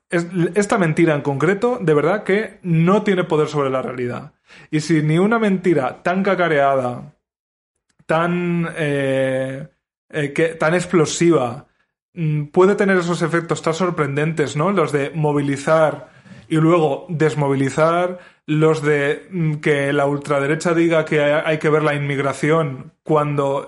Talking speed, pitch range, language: 125 wpm, 140-170 Hz, Spanish